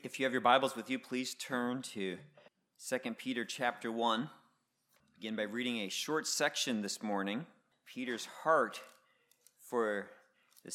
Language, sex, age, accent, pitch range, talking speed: English, male, 40-59, American, 120-150 Hz, 145 wpm